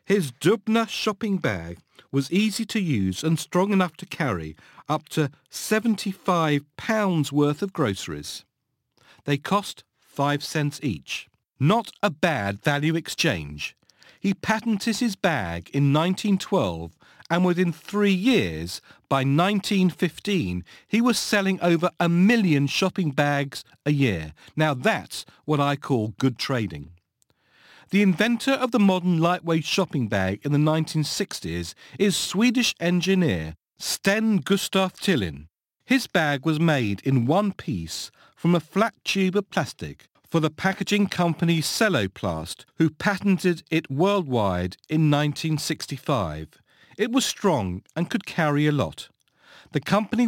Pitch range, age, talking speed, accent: 135-195 Hz, 50-69, 130 wpm, British